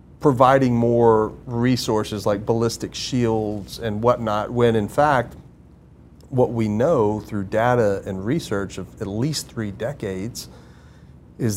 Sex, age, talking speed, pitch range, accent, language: male, 40-59, 125 wpm, 105-130 Hz, American, English